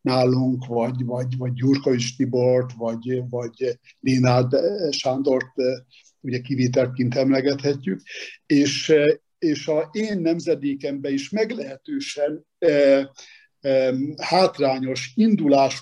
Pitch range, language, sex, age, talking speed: 130-150 Hz, Hungarian, male, 60-79, 85 wpm